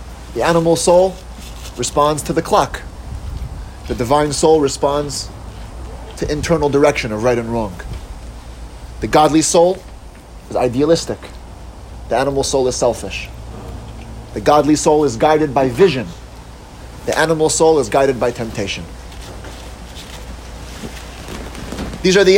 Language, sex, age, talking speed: English, male, 30-49, 120 wpm